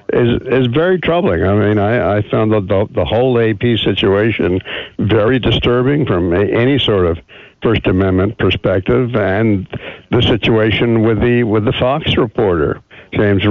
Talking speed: 155 wpm